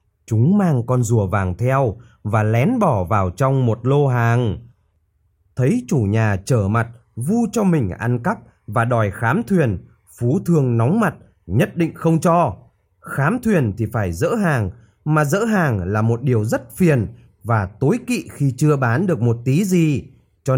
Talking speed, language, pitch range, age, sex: 180 wpm, Vietnamese, 110-170 Hz, 20-39, male